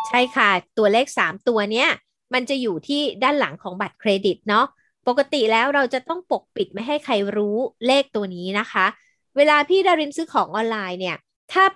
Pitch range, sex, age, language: 200-280 Hz, female, 20-39, Thai